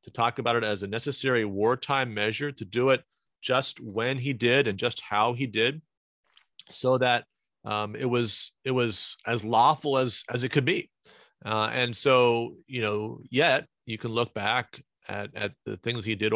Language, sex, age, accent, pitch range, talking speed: English, male, 30-49, American, 110-125 Hz, 185 wpm